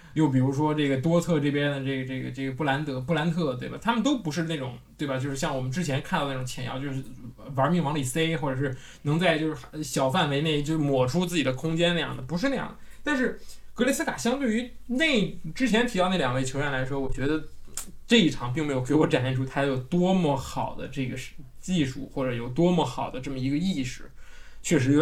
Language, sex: Chinese, male